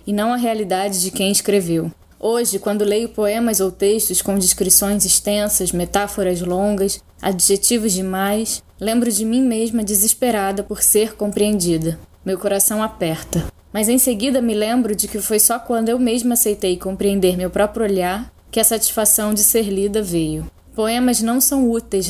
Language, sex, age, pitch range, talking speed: Portuguese, female, 10-29, 195-225 Hz, 160 wpm